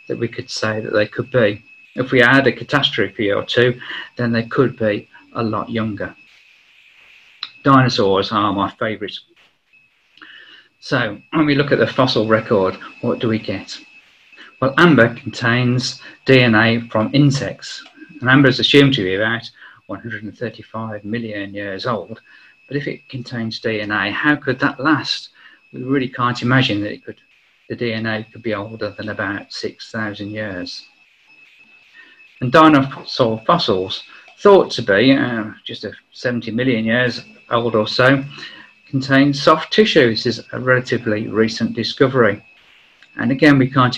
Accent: British